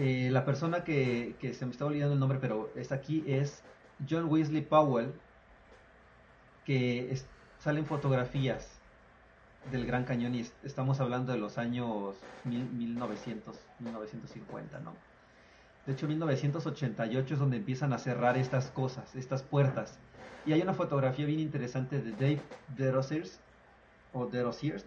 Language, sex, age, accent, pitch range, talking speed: Spanish, male, 30-49, Mexican, 120-140 Hz, 130 wpm